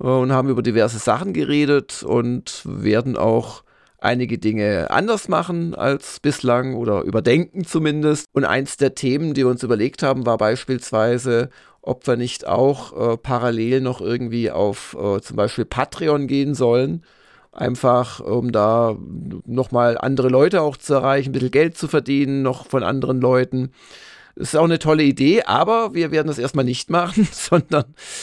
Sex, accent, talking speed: male, German, 160 wpm